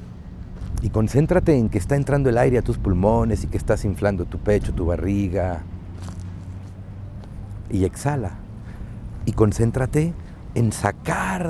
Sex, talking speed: male, 130 wpm